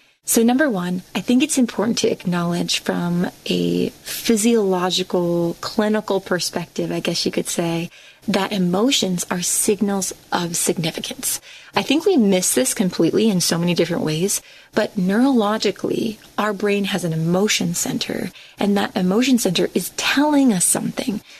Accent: American